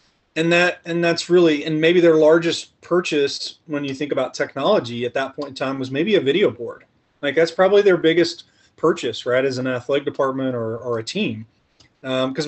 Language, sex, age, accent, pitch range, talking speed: English, male, 30-49, American, 130-175 Hz, 195 wpm